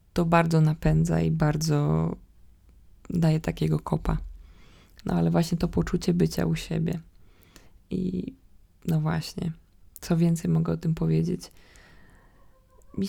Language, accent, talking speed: Polish, native, 120 wpm